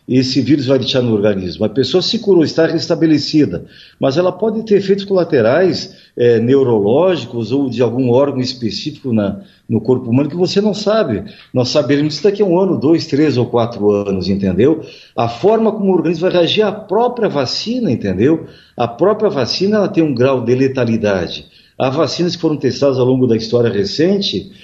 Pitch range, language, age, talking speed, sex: 125-170 Hz, Portuguese, 50-69, 185 wpm, male